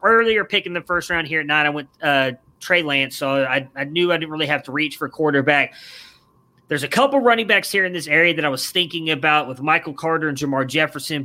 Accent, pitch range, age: American, 145-175 Hz, 20-39